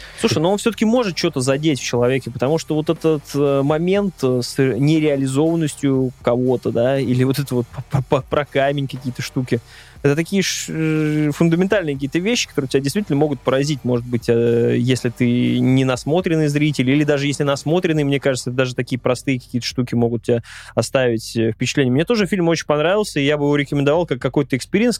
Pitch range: 125-155 Hz